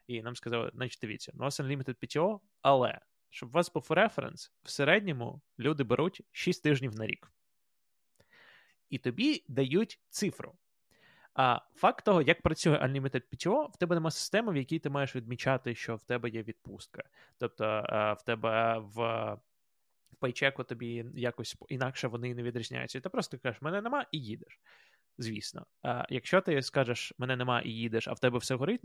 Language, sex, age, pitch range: Ukrainian, male, 20-39, 120-155 Hz